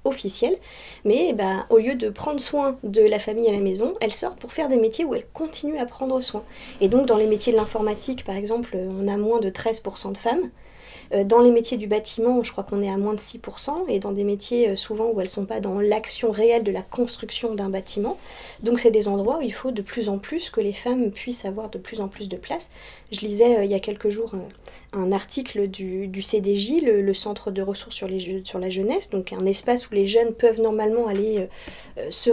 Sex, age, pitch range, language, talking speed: female, 20-39, 205-245 Hz, French, 240 wpm